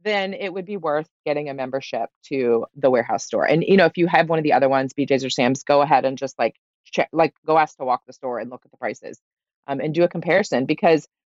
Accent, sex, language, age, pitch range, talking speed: American, female, English, 30-49, 145-180 Hz, 265 wpm